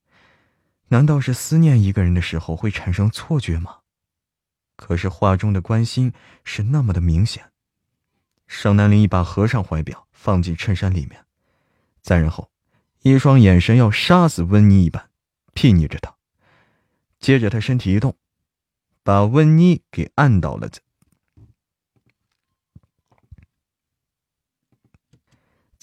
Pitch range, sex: 85-115 Hz, male